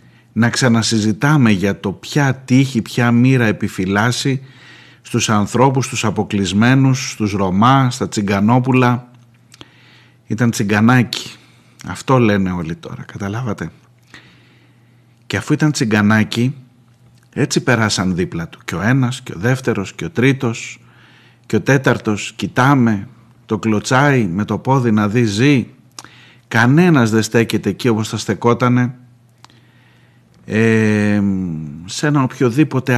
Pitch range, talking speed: 110-130 Hz, 115 wpm